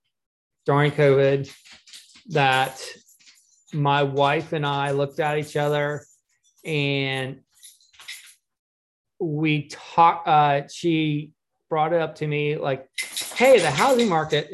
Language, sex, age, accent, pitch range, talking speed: English, male, 20-39, American, 140-160 Hz, 105 wpm